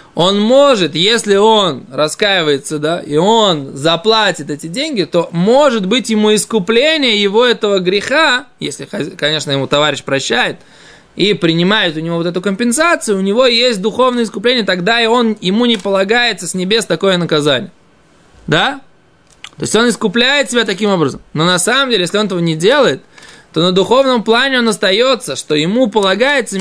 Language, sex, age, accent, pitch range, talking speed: Russian, male, 20-39, native, 175-240 Hz, 160 wpm